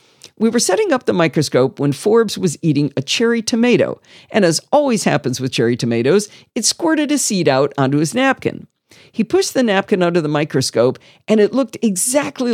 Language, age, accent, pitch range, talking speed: English, 50-69, American, 145-235 Hz, 185 wpm